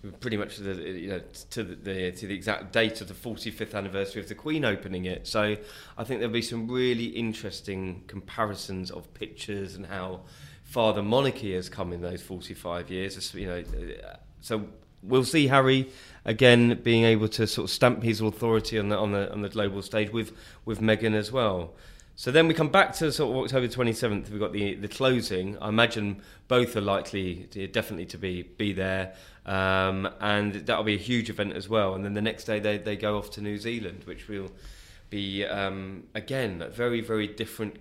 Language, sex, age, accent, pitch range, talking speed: English, male, 20-39, British, 95-110 Hz, 205 wpm